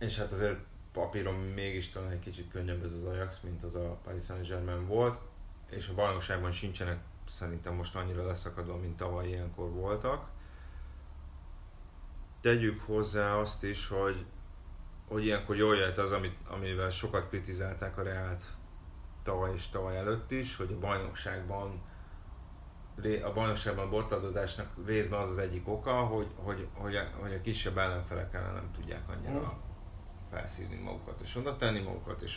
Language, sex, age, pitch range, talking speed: Hungarian, male, 30-49, 90-105 Hz, 145 wpm